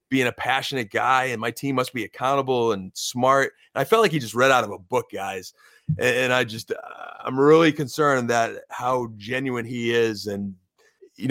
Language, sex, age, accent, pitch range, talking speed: English, male, 30-49, American, 115-150 Hz, 190 wpm